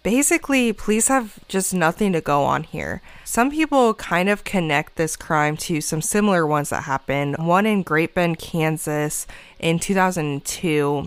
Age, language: 20-39, English